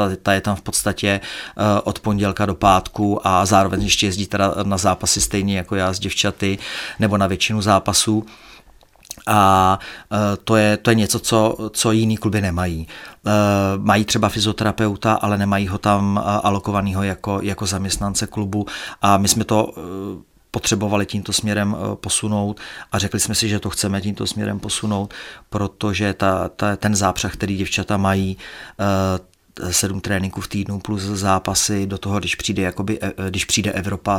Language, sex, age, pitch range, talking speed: Czech, male, 40-59, 95-105 Hz, 150 wpm